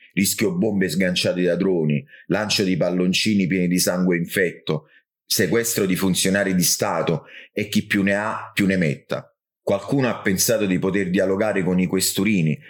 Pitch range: 90-100 Hz